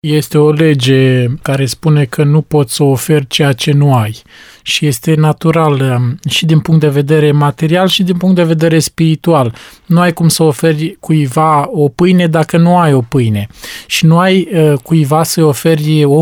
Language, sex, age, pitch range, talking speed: Romanian, male, 20-39, 140-170 Hz, 180 wpm